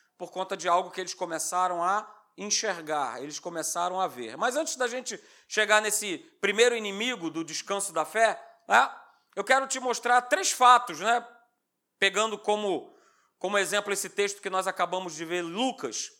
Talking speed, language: 165 wpm, Portuguese